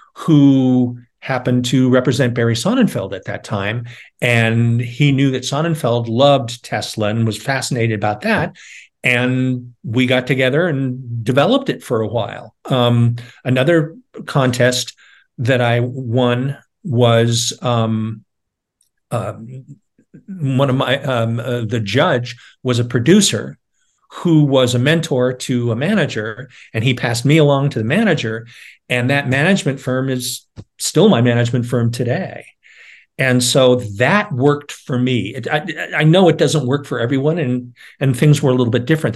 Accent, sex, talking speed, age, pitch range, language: American, male, 150 wpm, 50-69, 120-145 Hz, English